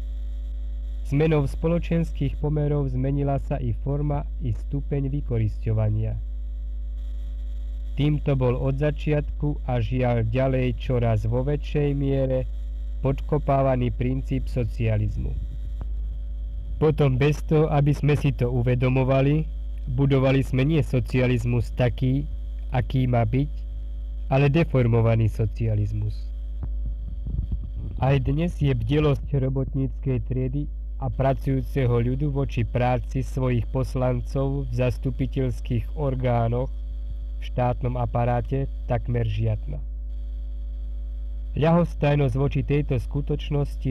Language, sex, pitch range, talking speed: Slovak, male, 105-140 Hz, 95 wpm